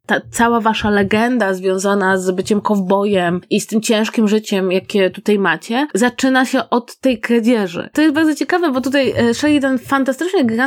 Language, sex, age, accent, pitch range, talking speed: Polish, female, 20-39, native, 205-255 Hz, 175 wpm